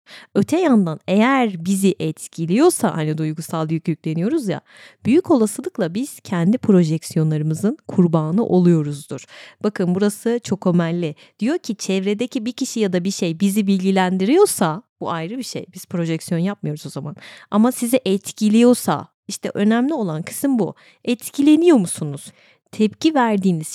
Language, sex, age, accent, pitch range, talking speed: Turkish, female, 30-49, native, 170-235 Hz, 135 wpm